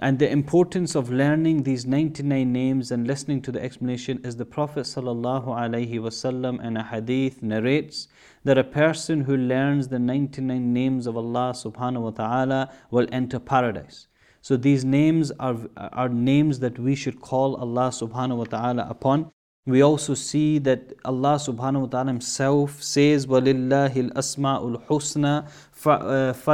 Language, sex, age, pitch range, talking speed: English, male, 30-49, 125-140 Hz, 140 wpm